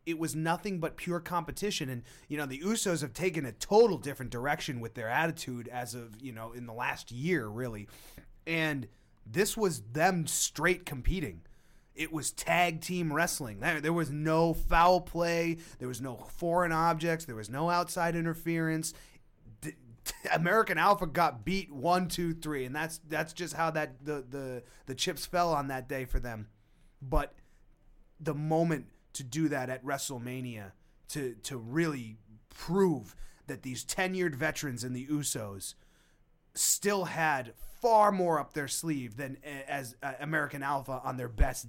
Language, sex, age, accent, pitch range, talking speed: English, male, 30-49, American, 125-165 Hz, 160 wpm